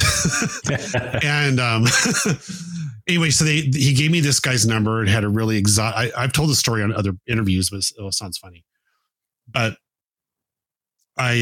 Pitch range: 100-130 Hz